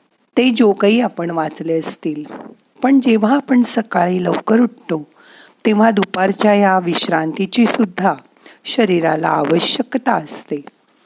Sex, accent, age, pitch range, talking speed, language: female, native, 50-69, 180-235 Hz, 105 wpm, Marathi